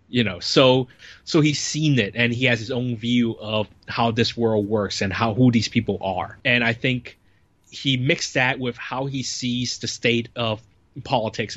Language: English